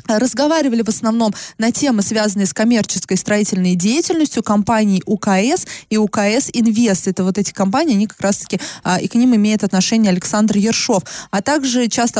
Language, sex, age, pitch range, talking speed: Russian, female, 20-39, 195-240 Hz, 165 wpm